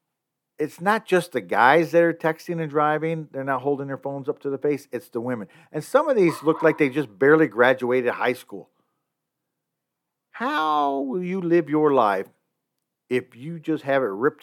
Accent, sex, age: American, male, 50-69